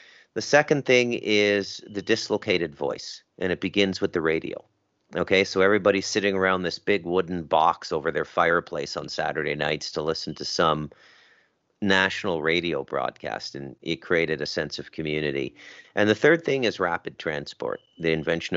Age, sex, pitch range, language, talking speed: 40-59, male, 80-100 Hz, English, 165 wpm